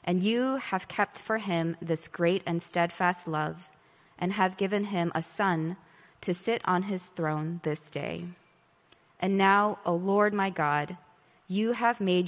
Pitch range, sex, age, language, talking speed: 165-190 Hz, female, 20-39, English, 160 wpm